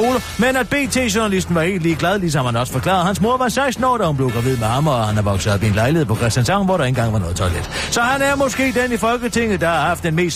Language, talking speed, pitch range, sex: Danish, 280 wpm, 130-205 Hz, male